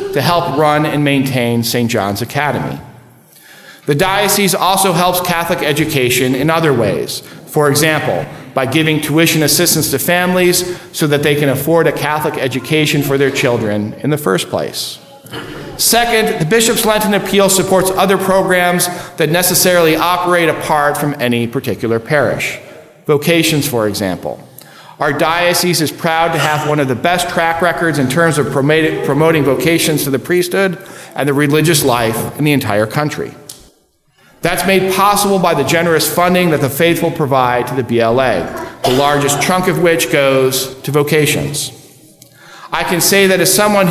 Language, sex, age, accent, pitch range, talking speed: English, male, 50-69, American, 145-180 Hz, 160 wpm